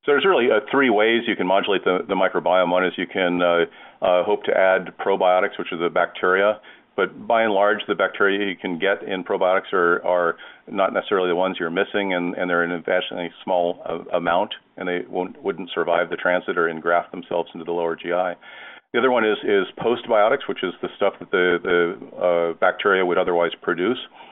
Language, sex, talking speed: English, male, 205 wpm